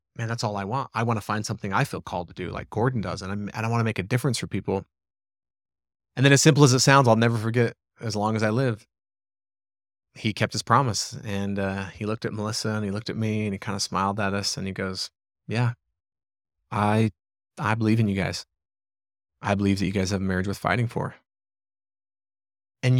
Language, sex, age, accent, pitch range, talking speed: English, male, 30-49, American, 100-120 Hz, 230 wpm